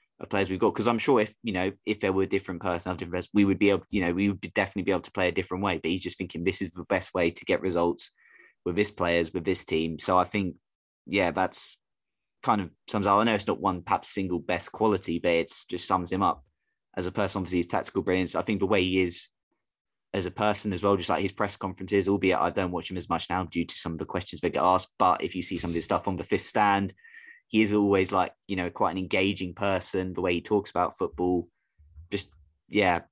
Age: 20-39